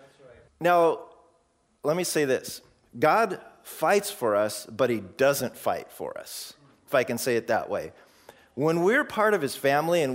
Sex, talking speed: male, 170 wpm